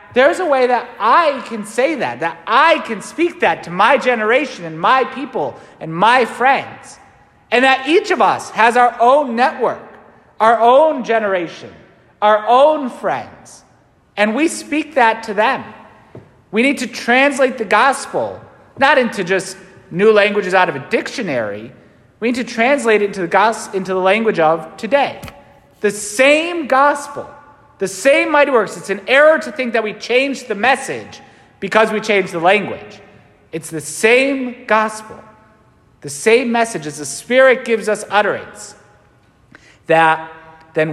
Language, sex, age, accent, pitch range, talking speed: English, male, 30-49, American, 170-255 Hz, 155 wpm